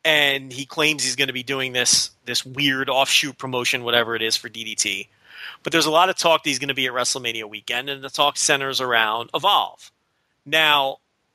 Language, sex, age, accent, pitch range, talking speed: English, male, 30-49, American, 135-190 Hz, 205 wpm